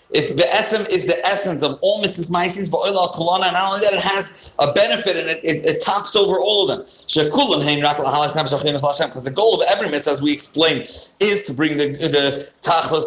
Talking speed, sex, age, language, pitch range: 195 wpm, male, 40-59, English, 150-190 Hz